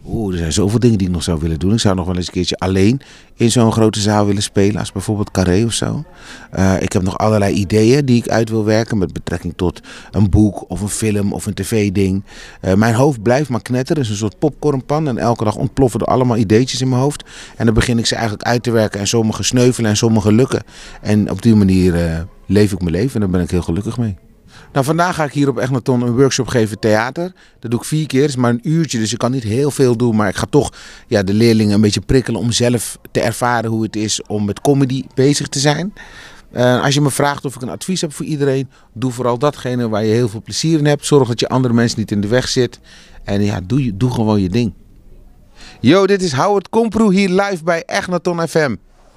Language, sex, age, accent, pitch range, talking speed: Dutch, male, 30-49, Dutch, 105-135 Hz, 250 wpm